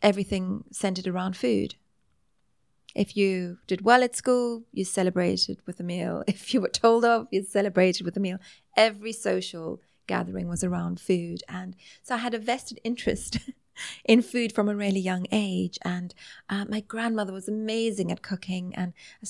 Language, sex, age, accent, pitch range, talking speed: English, female, 30-49, British, 180-215 Hz, 170 wpm